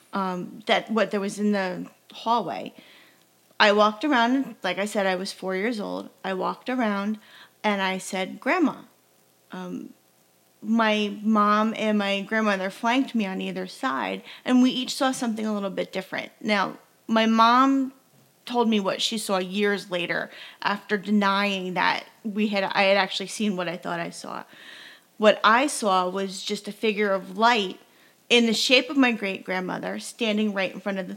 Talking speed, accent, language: 175 wpm, American, English